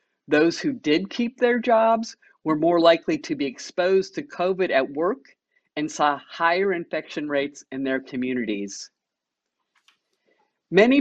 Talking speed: 135 wpm